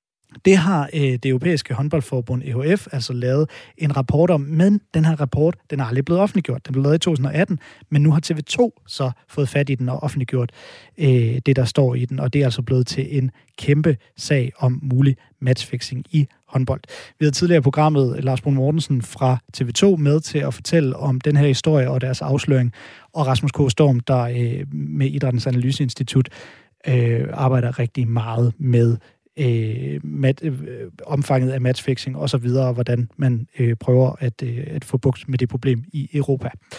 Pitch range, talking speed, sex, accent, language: 130-155 Hz, 180 wpm, male, native, Danish